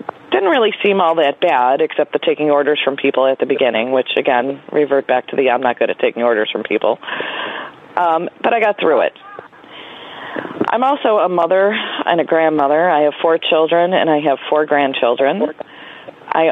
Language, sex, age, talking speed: English, female, 40-59, 190 wpm